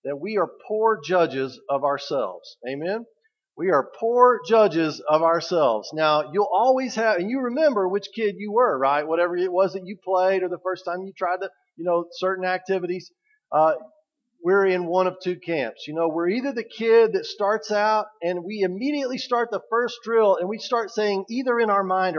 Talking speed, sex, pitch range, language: 200 wpm, male, 160-225 Hz, English